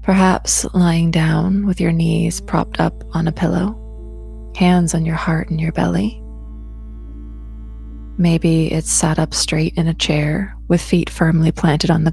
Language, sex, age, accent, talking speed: English, female, 20-39, American, 160 wpm